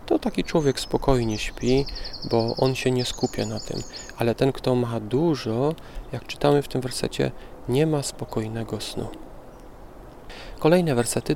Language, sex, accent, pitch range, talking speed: Polish, male, native, 110-135 Hz, 150 wpm